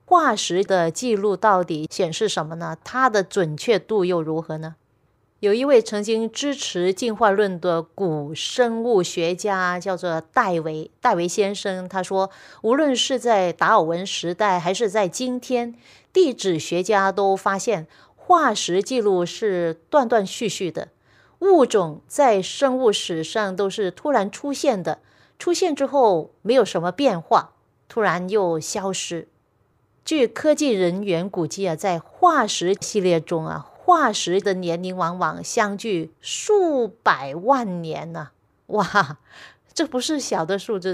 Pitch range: 175-230 Hz